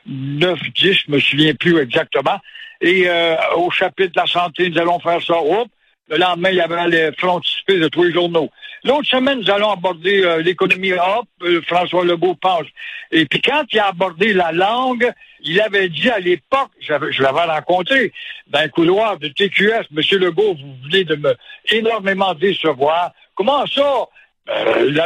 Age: 60-79